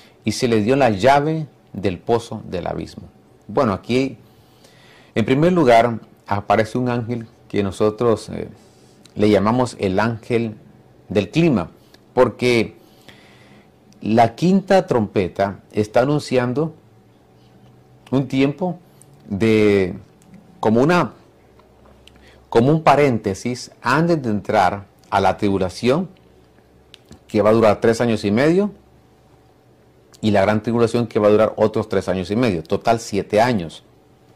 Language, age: Spanish, 40-59